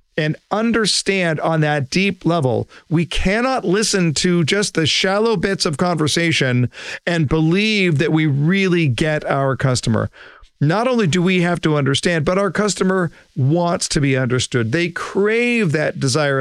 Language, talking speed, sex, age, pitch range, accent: English, 155 wpm, male, 50-69, 135-190 Hz, American